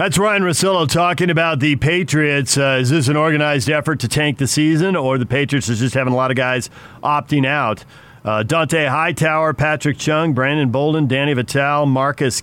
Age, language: 40-59, English